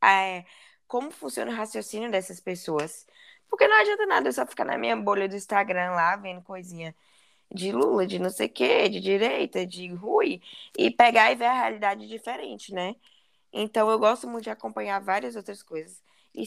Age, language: 10-29, Portuguese